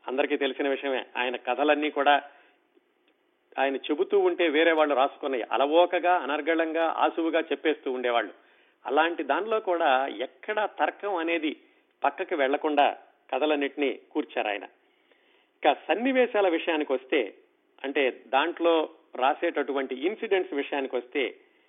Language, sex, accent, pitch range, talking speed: Telugu, male, native, 150-225 Hz, 105 wpm